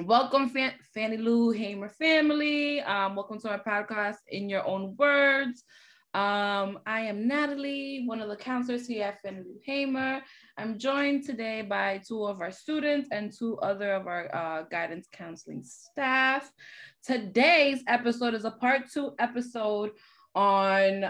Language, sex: English, female